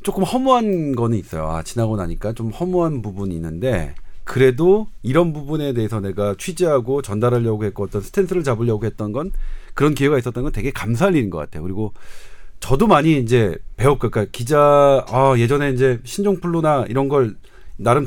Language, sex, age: Korean, male, 40-59